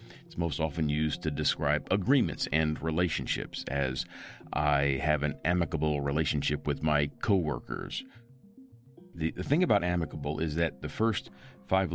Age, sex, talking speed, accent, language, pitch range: 40-59, male, 140 wpm, American, English, 75-105 Hz